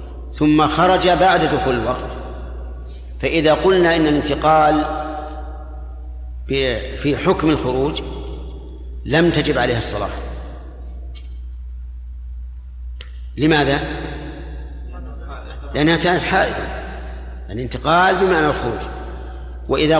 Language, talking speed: Arabic, 70 wpm